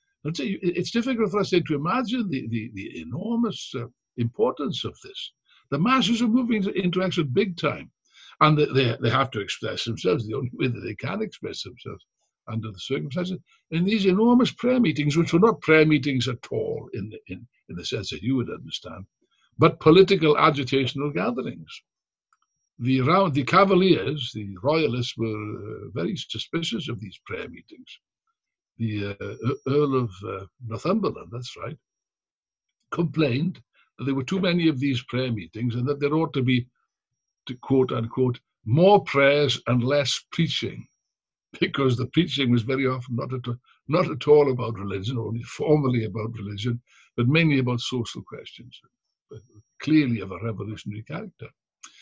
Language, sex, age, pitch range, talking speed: English, male, 60-79, 120-170 Hz, 165 wpm